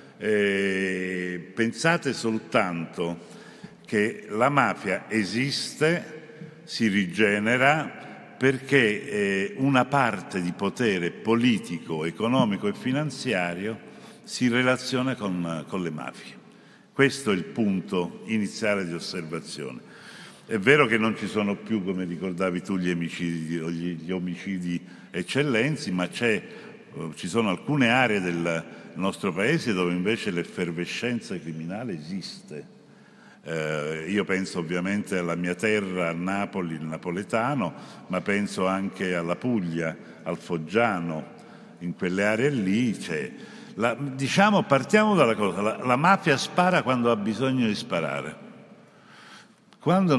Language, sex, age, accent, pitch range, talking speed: Italian, male, 60-79, native, 90-130 Hz, 120 wpm